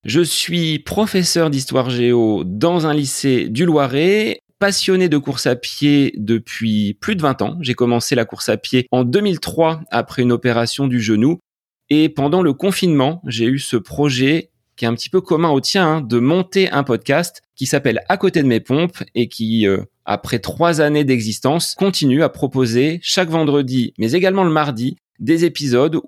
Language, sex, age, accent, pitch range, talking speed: French, male, 30-49, French, 120-160 Hz, 180 wpm